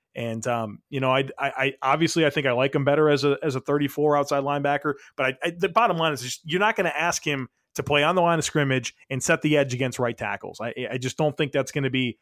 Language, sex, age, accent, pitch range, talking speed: English, male, 30-49, American, 130-155 Hz, 285 wpm